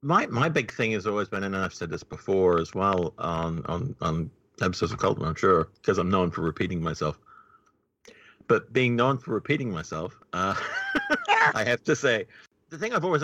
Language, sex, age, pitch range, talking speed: English, male, 50-69, 95-120 Hz, 195 wpm